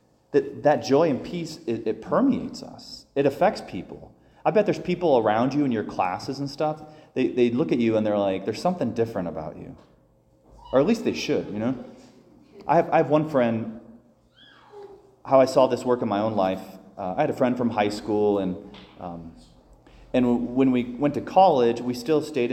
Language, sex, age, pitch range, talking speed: English, male, 30-49, 105-135 Hz, 210 wpm